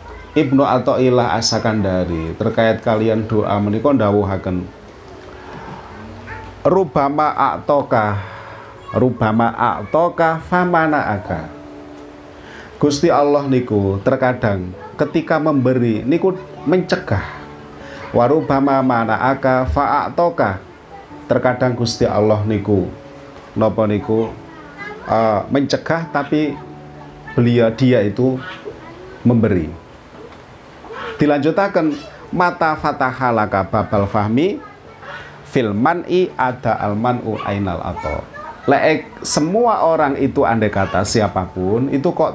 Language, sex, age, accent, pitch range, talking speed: Indonesian, male, 40-59, native, 105-145 Hz, 80 wpm